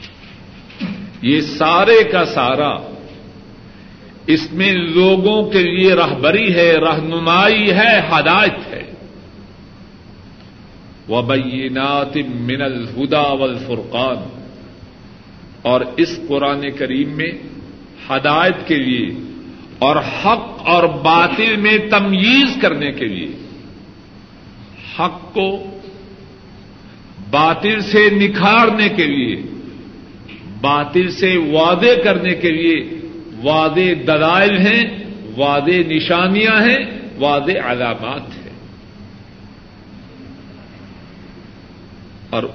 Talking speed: 85 wpm